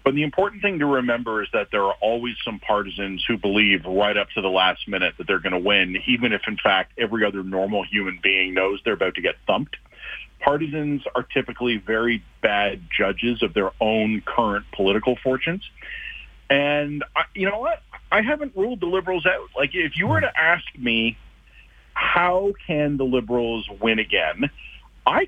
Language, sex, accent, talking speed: English, male, American, 185 wpm